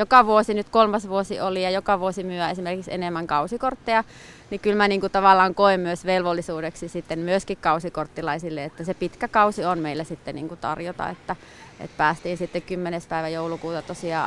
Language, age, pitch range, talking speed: Finnish, 30-49, 165-200 Hz, 160 wpm